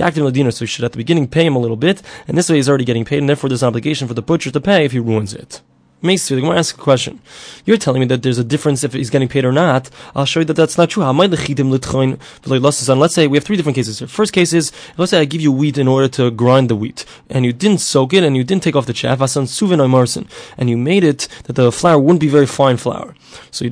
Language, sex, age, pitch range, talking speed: English, male, 20-39, 130-165 Hz, 280 wpm